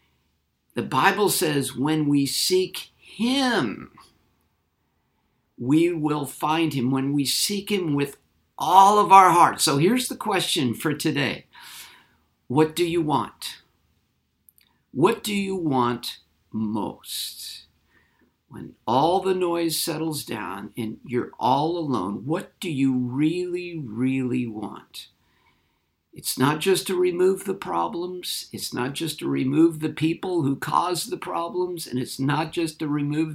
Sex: male